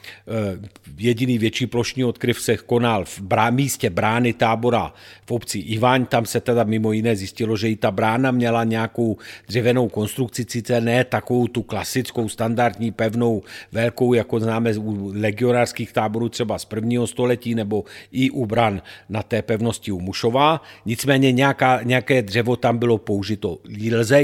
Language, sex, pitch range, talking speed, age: Czech, male, 110-125 Hz, 150 wpm, 50-69